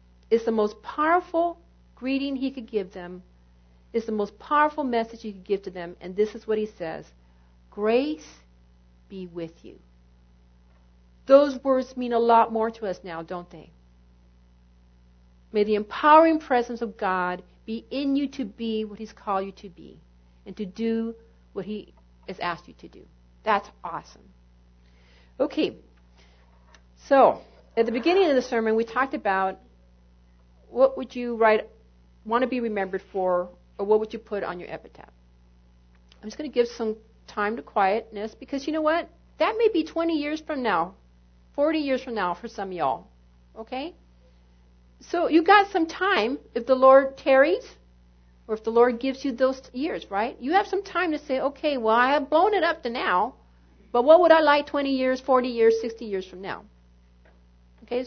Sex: female